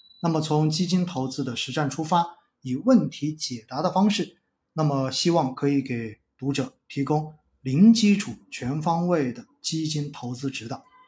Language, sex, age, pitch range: Chinese, male, 20-39, 135-180 Hz